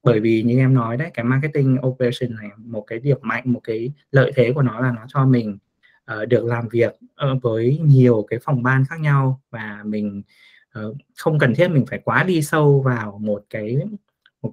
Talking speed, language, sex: 210 wpm, Vietnamese, male